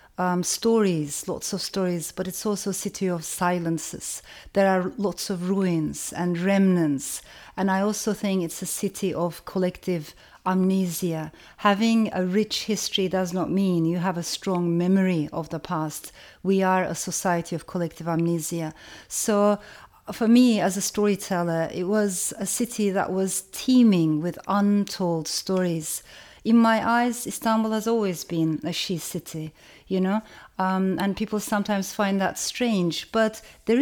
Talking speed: 155 wpm